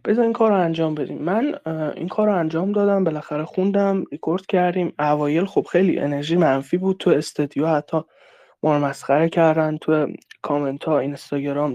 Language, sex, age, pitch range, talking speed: Persian, male, 20-39, 150-195 Hz, 155 wpm